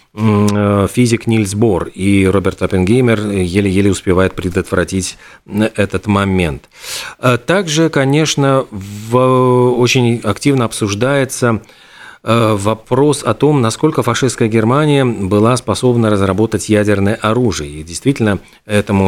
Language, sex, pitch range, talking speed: Russian, male, 100-125 Hz, 100 wpm